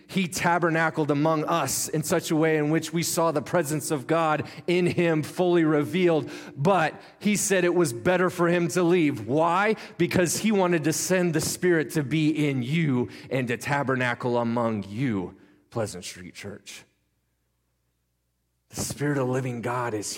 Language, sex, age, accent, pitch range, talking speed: English, male, 30-49, American, 135-180 Hz, 165 wpm